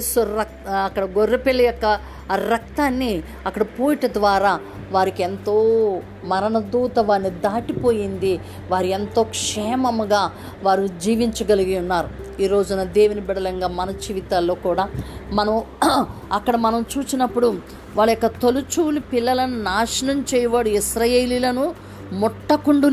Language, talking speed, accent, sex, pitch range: Telugu, 90 wpm, native, female, 205-250 Hz